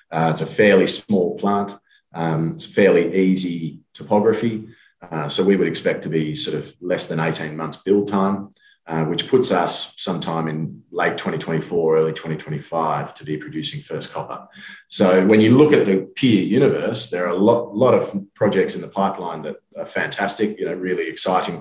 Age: 30-49